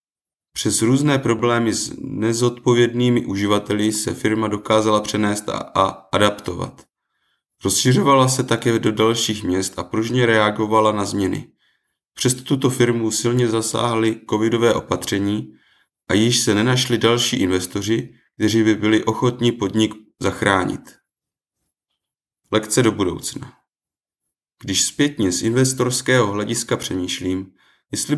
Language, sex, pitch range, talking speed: Czech, male, 100-125 Hz, 115 wpm